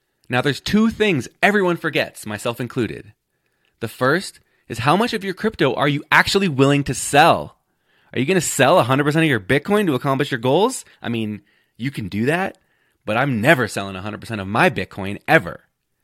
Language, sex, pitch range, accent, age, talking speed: English, male, 115-165 Hz, American, 20-39, 185 wpm